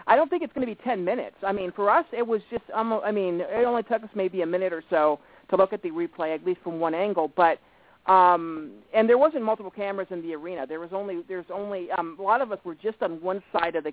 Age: 40-59